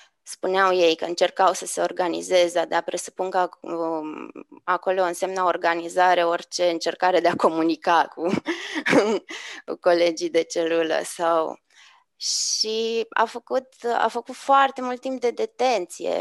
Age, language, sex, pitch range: 20-39, Romanian, female, 180-225 Hz